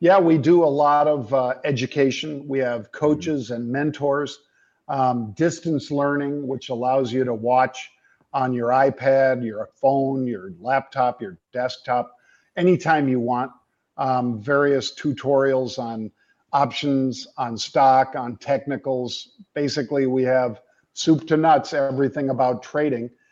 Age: 50-69